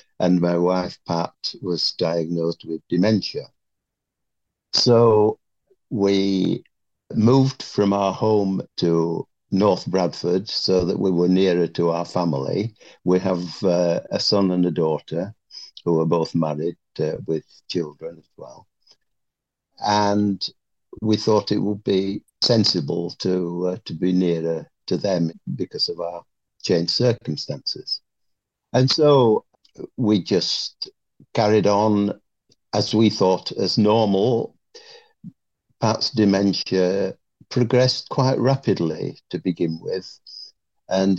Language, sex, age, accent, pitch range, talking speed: English, male, 60-79, British, 90-105 Hz, 120 wpm